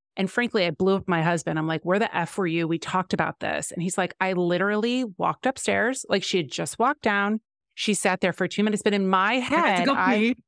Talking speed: 240 wpm